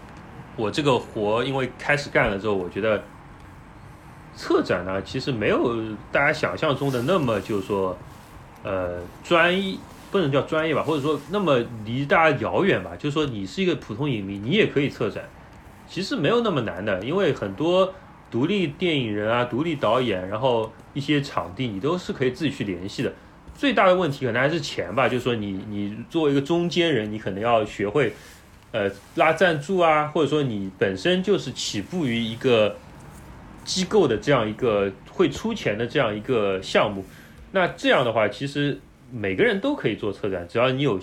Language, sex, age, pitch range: Chinese, male, 30-49, 100-150 Hz